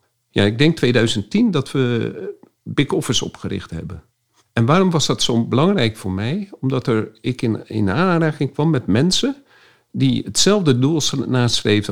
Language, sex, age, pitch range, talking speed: Dutch, male, 50-69, 115-160 Hz, 150 wpm